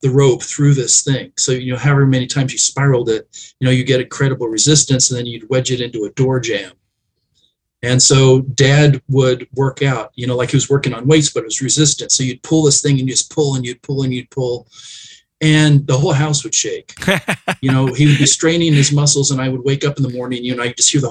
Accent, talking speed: American, 255 wpm